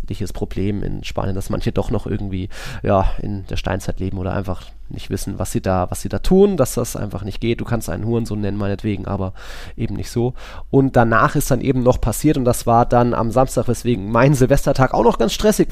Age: 20-39